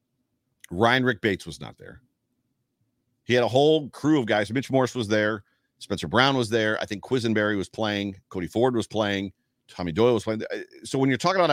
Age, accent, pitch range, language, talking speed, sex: 40-59, American, 110-130 Hz, English, 205 wpm, male